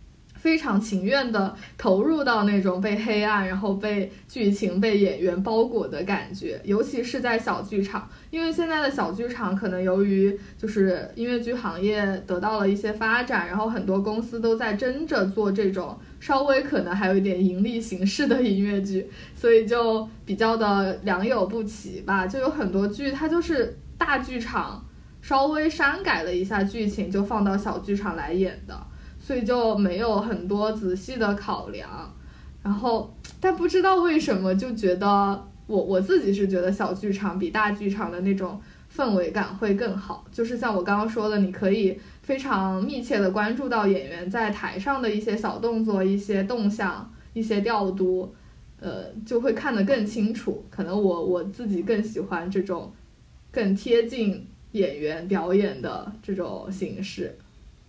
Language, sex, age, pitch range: Chinese, female, 20-39, 195-230 Hz